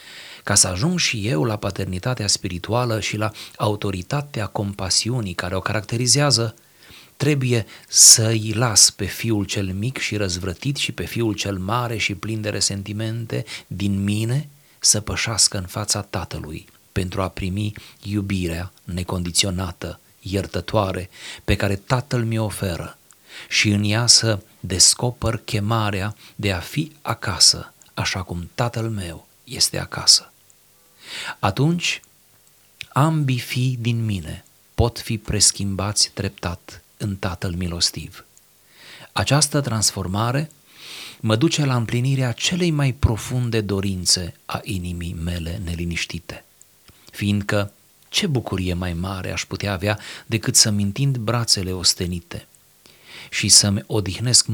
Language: Romanian